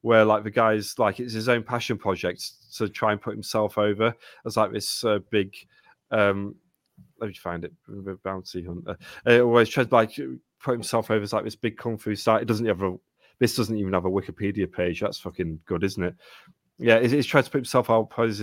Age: 30-49